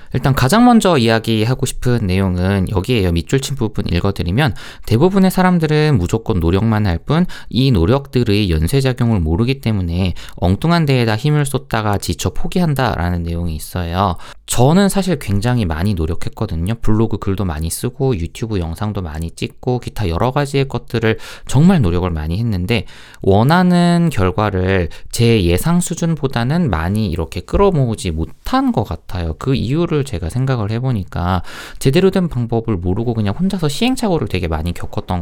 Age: 20-39